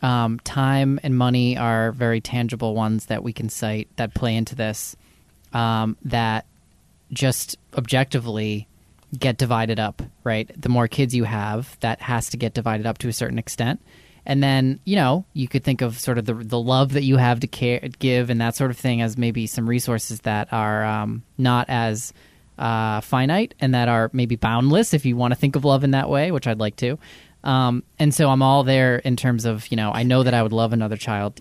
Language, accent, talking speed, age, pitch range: English, American, 215 wpm, 20-39, 115-130 Hz